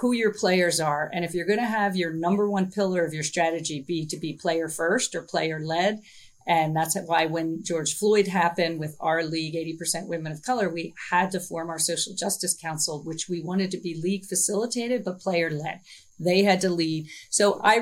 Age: 40-59